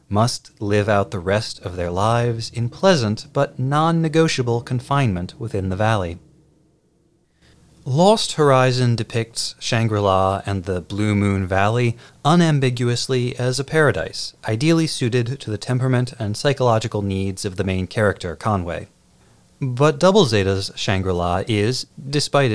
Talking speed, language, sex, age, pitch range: 130 wpm, English, male, 30-49, 95-130 Hz